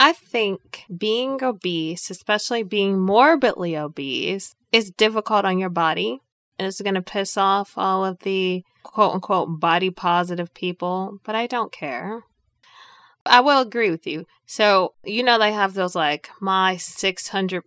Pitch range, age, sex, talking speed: 175-210 Hz, 20-39, female, 155 wpm